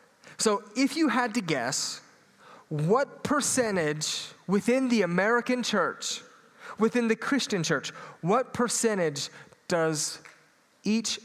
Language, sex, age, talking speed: English, male, 30-49, 105 wpm